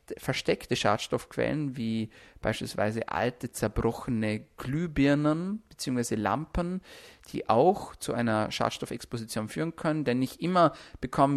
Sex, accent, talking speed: male, German, 105 wpm